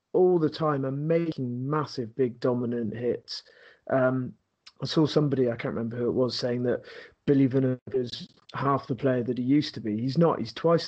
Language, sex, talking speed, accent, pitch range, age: English, male, 200 wpm, British, 130-160 Hz, 30-49